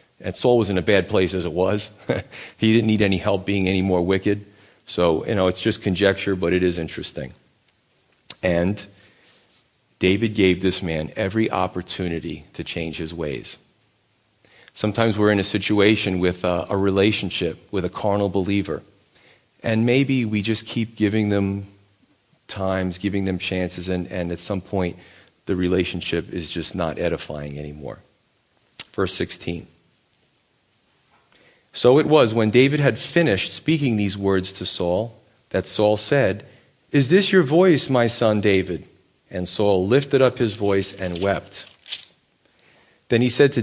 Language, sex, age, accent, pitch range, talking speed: English, male, 40-59, American, 95-115 Hz, 155 wpm